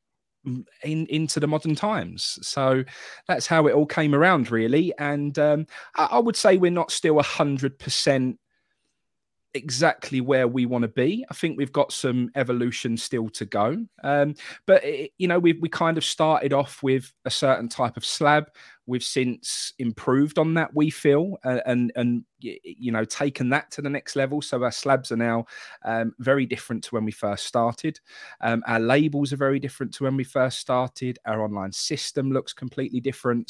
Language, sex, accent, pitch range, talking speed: English, male, British, 115-145 Hz, 190 wpm